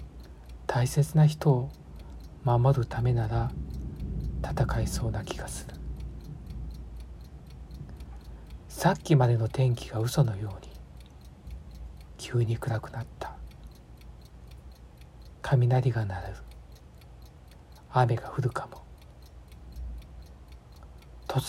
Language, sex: Japanese, male